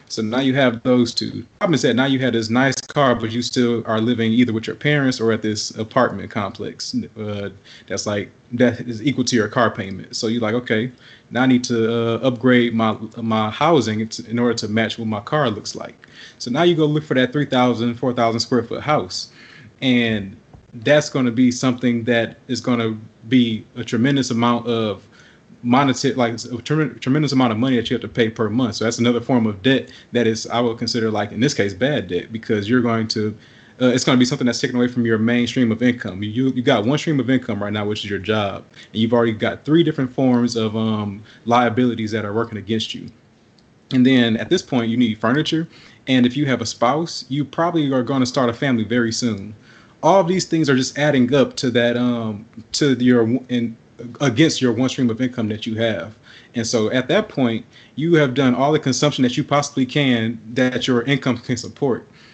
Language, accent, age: English, American, 30-49